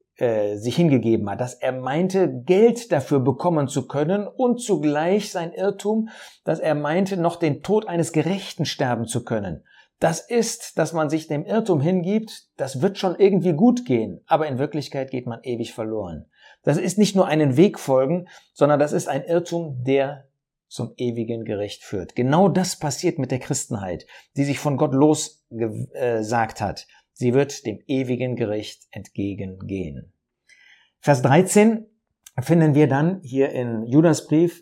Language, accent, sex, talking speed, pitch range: German, German, male, 160 wpm, 125-180 Hz